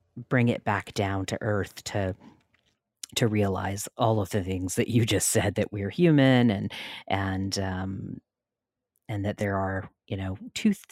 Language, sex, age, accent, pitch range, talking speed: English, female, 40-59, American, 105-125 Hz, 165 wpm